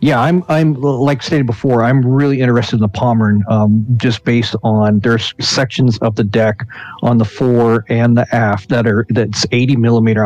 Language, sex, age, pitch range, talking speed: English, male, 40-59, 110-130 Hz, 185 wpm